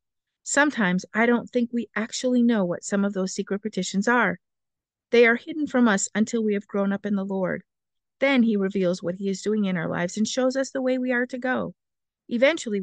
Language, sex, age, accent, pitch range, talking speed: English, female, 50-69, American, 195-245 Hz, 220 wpm